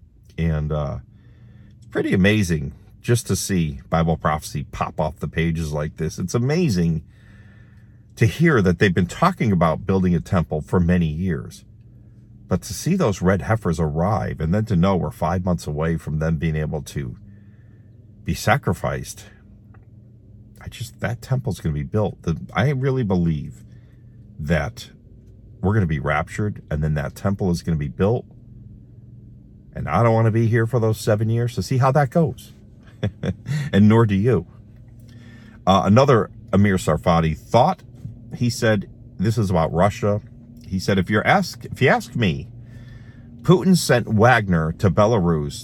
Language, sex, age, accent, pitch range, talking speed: English, male, 50-69, American, 90-120 Hz, 160 wpm